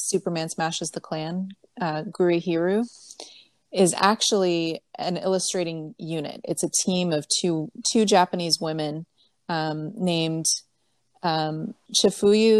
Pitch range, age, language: 160-185 Hz, 30-49, English